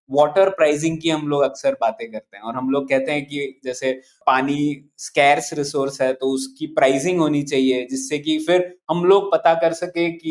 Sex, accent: male, native